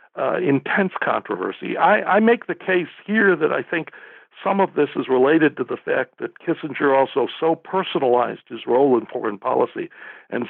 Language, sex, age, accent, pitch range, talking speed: English, male, 60-79, American, 115-150 Hz, 175 wpm